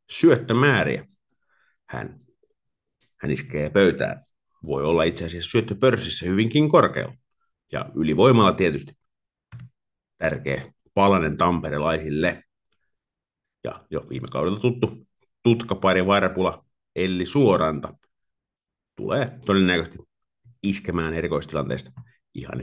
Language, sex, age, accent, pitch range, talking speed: Finnish, male, 50-69, native, 90-120 Hz, 85 wpm